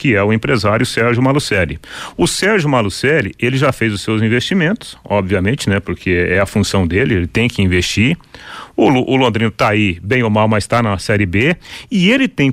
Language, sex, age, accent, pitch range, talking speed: Portuguese, male, 40-59, Brazilian, 100-145 Hz, 200 wpm